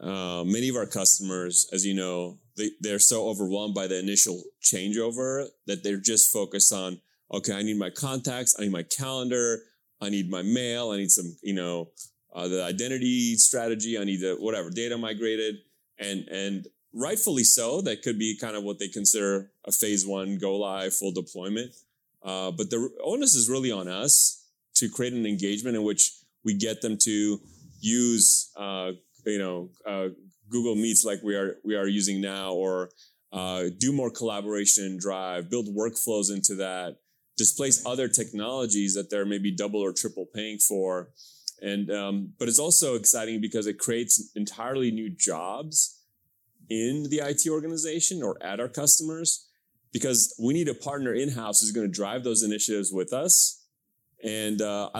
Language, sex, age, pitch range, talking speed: English, male, 30-49, 100-120 Hz, 170 wpm